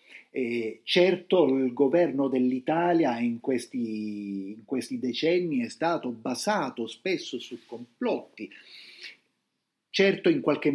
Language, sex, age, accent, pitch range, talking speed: Italian, male, 50-69, native, 120-150 Hz, 105 wpm